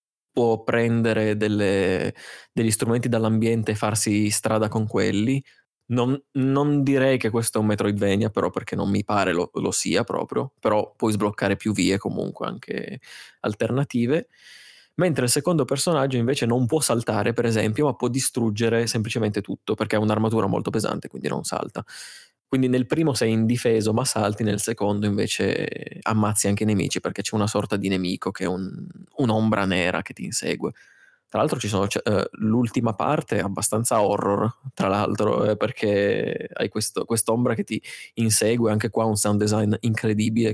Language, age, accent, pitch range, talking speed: Italian, 20-39, native, 105-125 Hz, 160 wpm